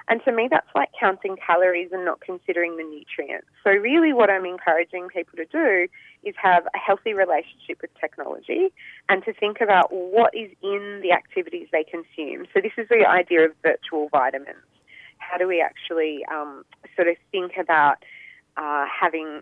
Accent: Australian